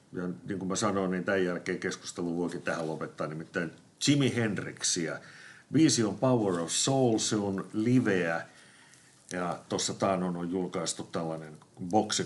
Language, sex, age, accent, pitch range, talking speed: Finnish, male, 50-69, native, 85-105 Hz, 140 wpm